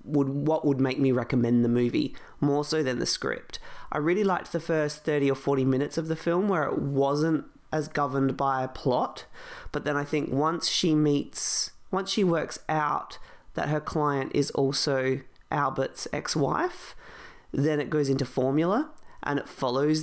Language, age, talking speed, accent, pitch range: English, 30-49, 175 wpm, Australian, 135-160 Hz